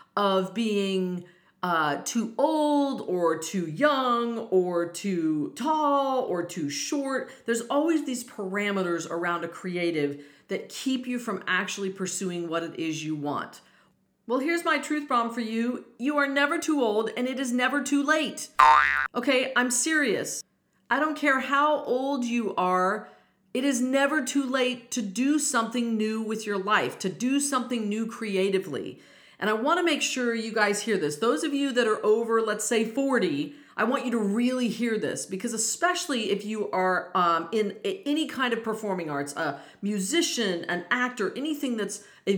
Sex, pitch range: female, 200-260 Hz